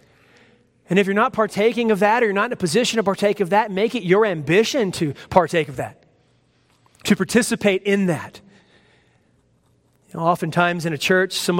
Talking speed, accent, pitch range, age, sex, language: 185 wpm, American, 150-200 Hz, 30-49, male, English